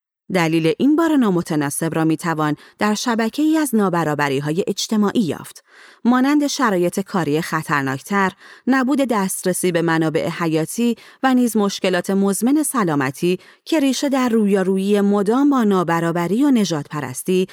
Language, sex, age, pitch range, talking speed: Persian, female, 30-49, 160-235 Hz, 125 wpm